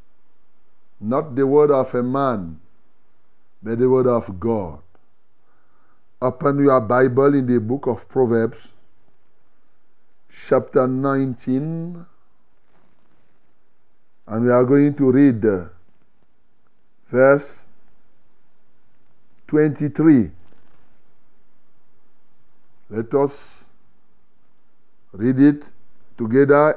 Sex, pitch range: male, 125-160 Hz